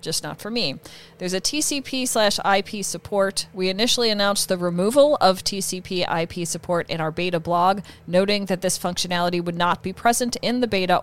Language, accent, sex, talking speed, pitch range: English, American, female, 185 wpm, 165-200 Hz